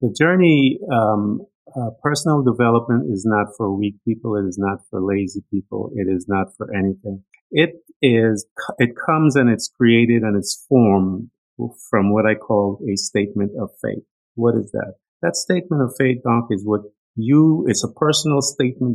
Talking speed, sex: 175 wpm, male